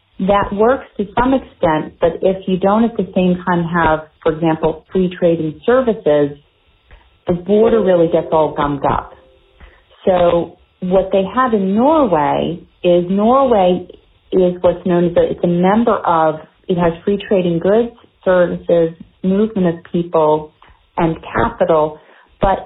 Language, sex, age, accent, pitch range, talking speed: English, female, 40-59, American, 155-195 Hz, 145 wpm